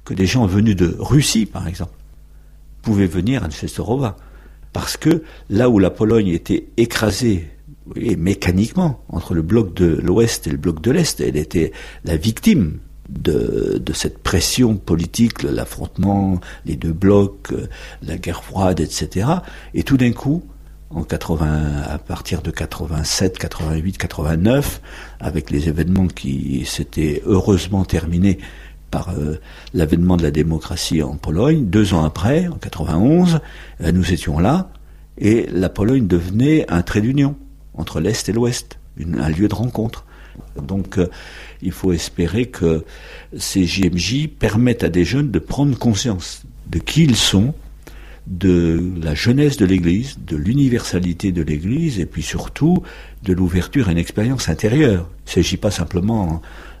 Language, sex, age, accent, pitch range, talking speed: French, male, 60-79, French, 80-115 Hz, 145 wpm